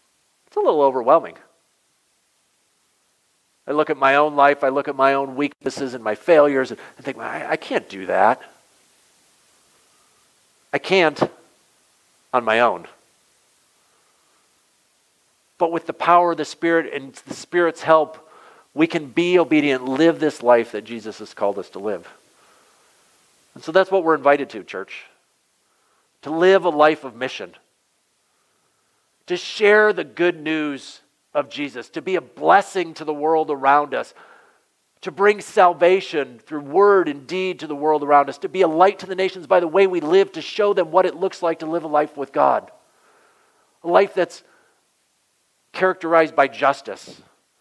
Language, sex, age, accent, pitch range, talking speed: English, male, 50-69, American, 145-185 Hz, 160 wpm